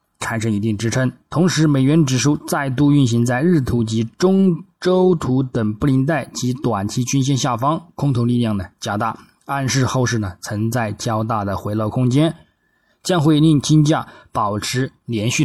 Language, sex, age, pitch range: Chinese, male, 20-39, 110-145 Hz